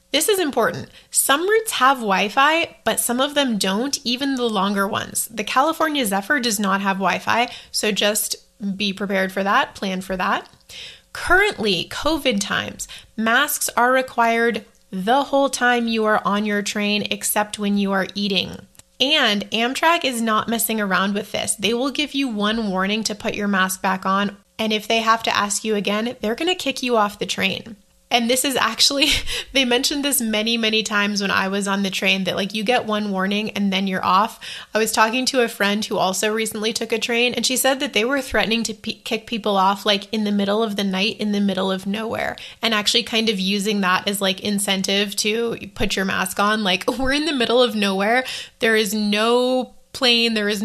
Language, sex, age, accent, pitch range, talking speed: English, female, 20-39, American, 200-240 Hz, 205 wpm